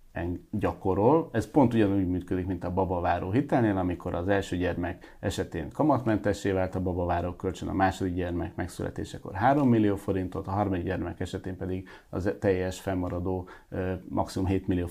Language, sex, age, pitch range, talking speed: English, male, 30-49, 90-105 Hz, 150 wpm